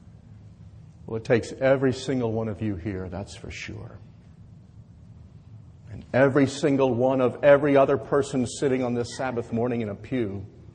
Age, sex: 50-69, male